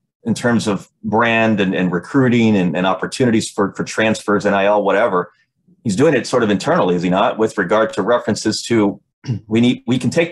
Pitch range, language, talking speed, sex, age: 95-110 Hz, English, 200 wpm, male, 30-49